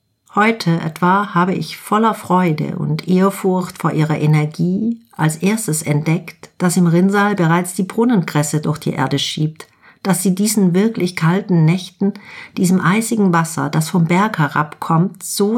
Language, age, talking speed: German, 50-69, 145 wpm